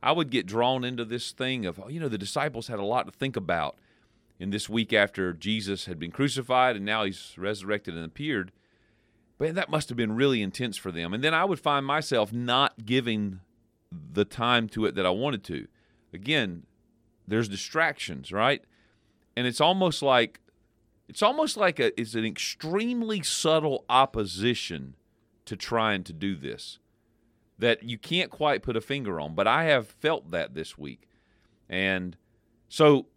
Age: 40-59